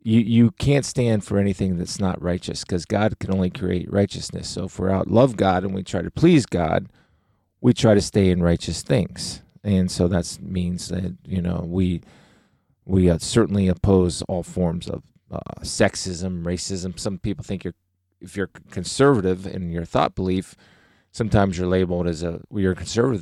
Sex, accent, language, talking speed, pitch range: male, American, English, 180 wpm, 90-105 Hz